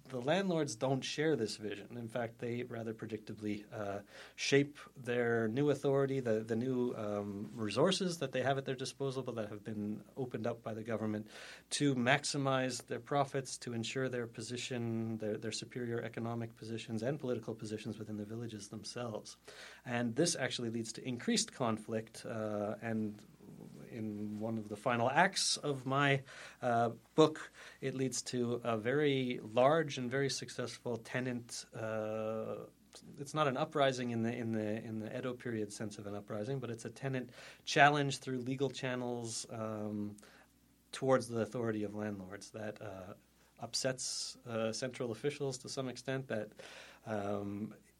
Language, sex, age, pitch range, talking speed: English, male, 30-49, 110-130 Hz, 160 wpm